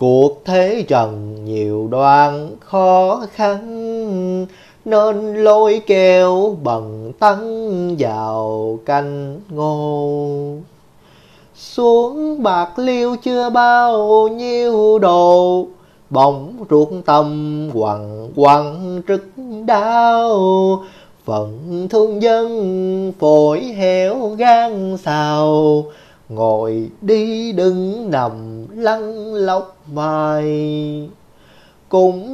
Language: Vietnamese